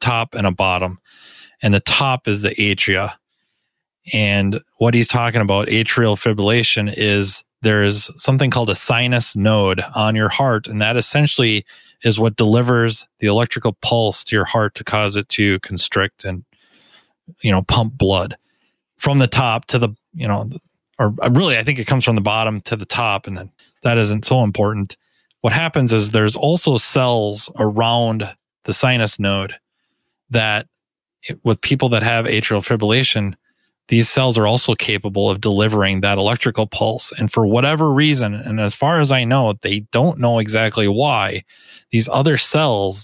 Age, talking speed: 30-49, 165 wpm